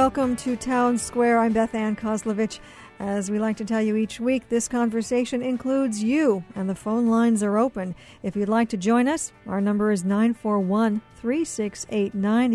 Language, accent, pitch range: English, American, 205-245 Hz